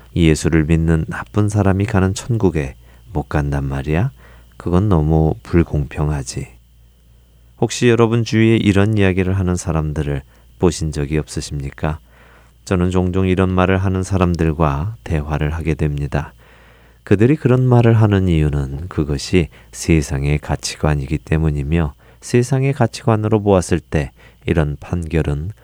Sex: male